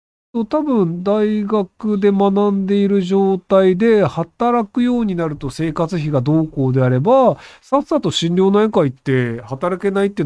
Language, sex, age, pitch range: Japanese, male, 40-59, 130-220 Hz